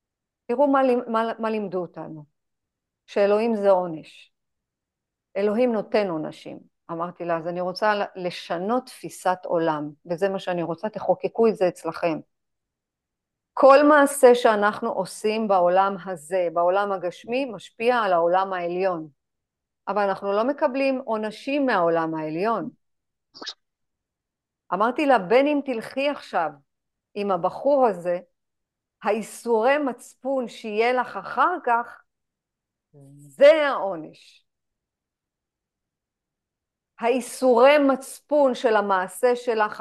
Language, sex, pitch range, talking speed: Hebrew, female, 185-255 Hz, 105 wpm